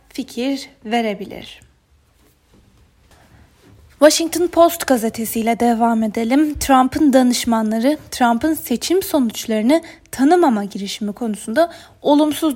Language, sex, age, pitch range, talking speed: Turkish, female, 10-29, 215-275 Hz, 75 wpm